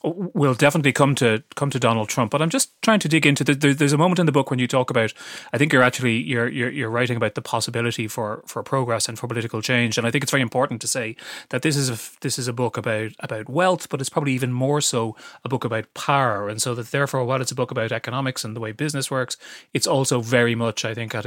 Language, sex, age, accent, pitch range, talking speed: English, male, 30-49, Irish, 115-135 Hz, 270 wpm